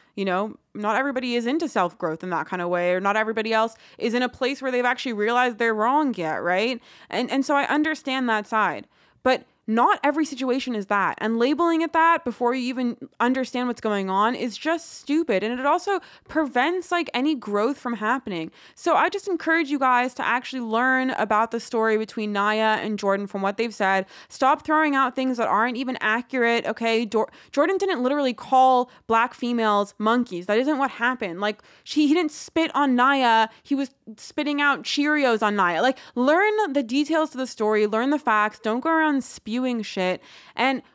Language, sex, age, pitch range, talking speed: English, female, 20-39, 220-285 Hz, 200 wpm